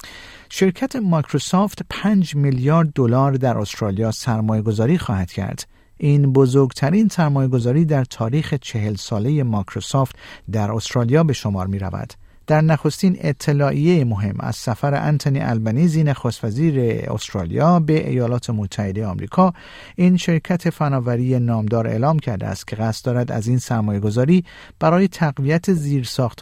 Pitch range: 110-155 Hz